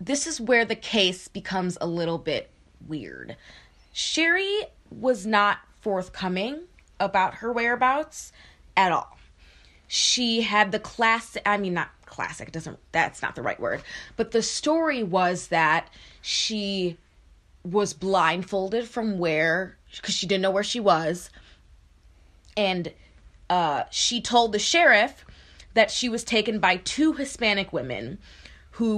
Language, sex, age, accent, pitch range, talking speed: English, female, 20-39, American, 170-230 Hz, 135 wpm